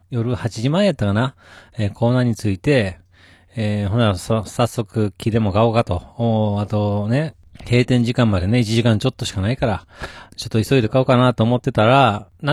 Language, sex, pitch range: Japanese, male, 100-135 Hz